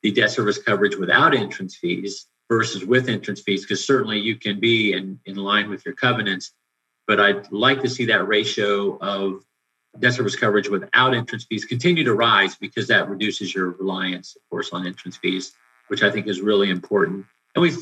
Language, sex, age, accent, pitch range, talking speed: English, male, 50-69, American, 95-125 Hz, 190 wpm